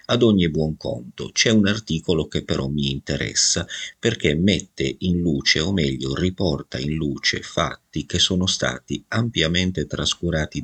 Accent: native